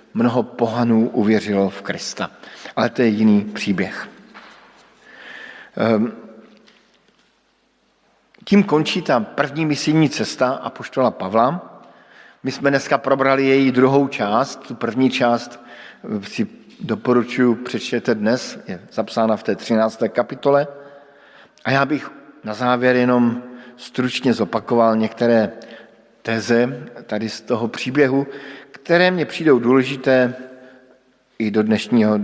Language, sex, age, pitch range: Slovak, male, 50-69, 120-145 Hz